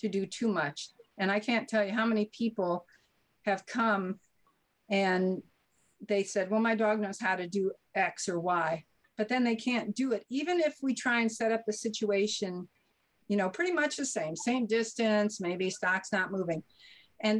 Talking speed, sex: 190 wpm, female